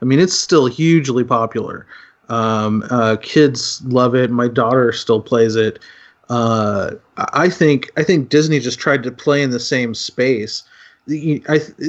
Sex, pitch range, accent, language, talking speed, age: male, 115-140 Hz, American, English, 160 wpm, 30-49